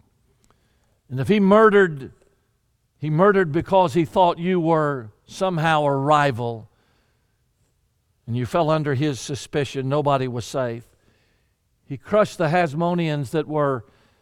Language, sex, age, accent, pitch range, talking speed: English, male, 50-69, American, 120-180 Hz, 120 wpm